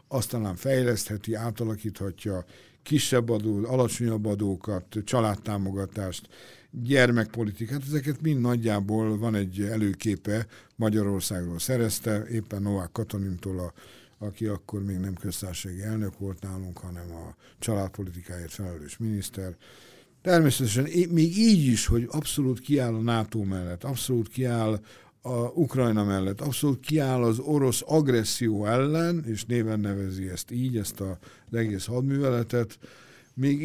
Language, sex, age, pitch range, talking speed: Hungarian, male, 60-79, 100-125 Hz, 115 wpm